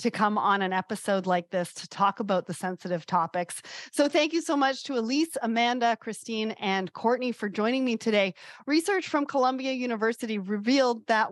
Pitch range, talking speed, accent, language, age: 200-260 Hz, 180 wpm, American, English, 30-49